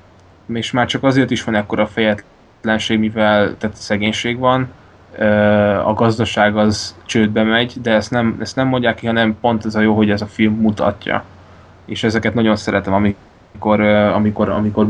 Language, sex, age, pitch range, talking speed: Hungarian, male, 10-29, 100-110 Hz, 155 wpm